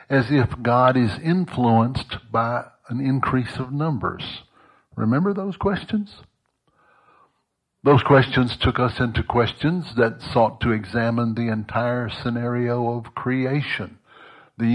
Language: English